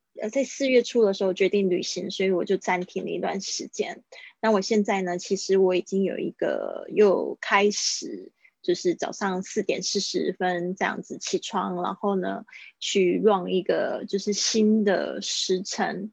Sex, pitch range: female, 185-215 Hz